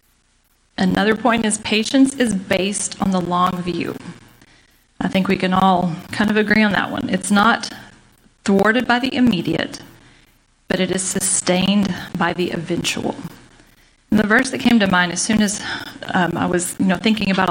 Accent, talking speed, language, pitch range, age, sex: American, 175 wpm, English, 180-220 Hz, 40-59, female